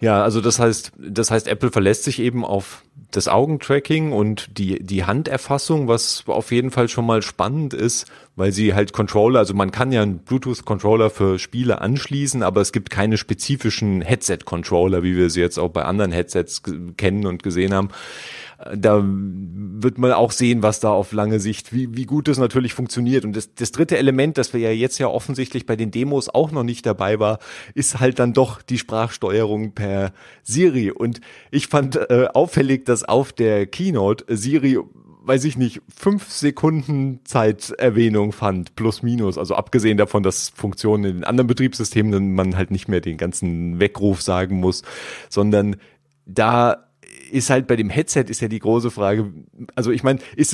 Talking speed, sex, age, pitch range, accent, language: 185 wpm, male, 30-49, 100-135 Hz, German, German